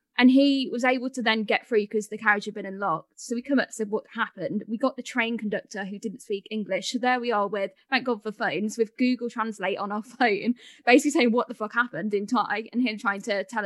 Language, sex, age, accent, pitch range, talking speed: English, female, 10-29, British, 205-250 Hz, 260 wpm